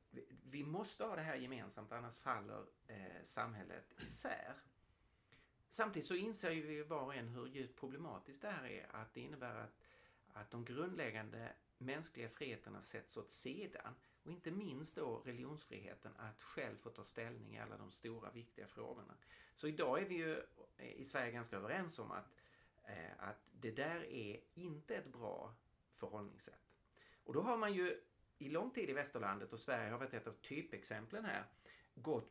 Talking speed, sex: 170 wpm, male